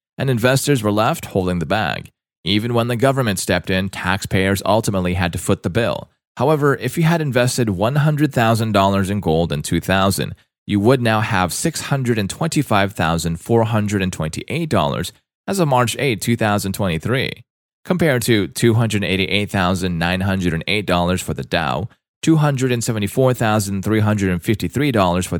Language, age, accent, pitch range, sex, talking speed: English, 30-49, American, 95-125 Hz, male, 115 wpm